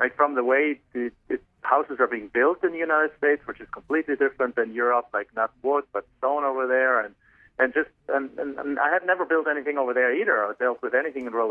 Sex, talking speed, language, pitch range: male, 235 wpm, English, 120-155 Hz